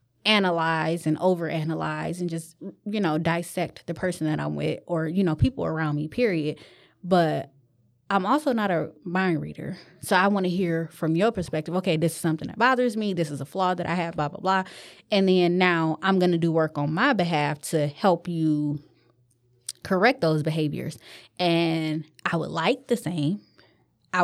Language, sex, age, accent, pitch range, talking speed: English, female, 20-39, American, 155-185 Hz, 190 wpm